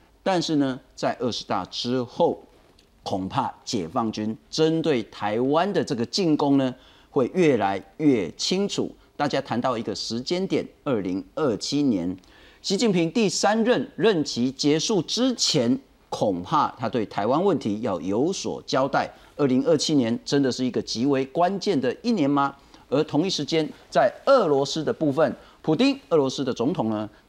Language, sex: Chinese, male